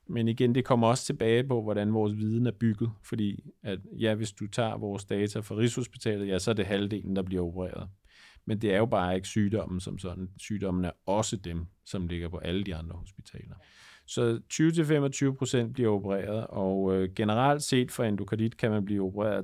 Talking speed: 200 wpm